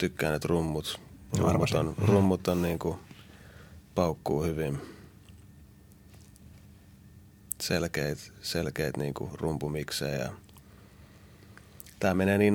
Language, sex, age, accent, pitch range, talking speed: Finnish, male, 30-49, native, 75-100 Hz, 85 wpm